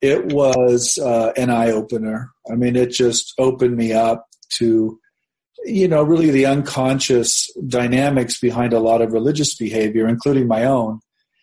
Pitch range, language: 115-140 Hz, English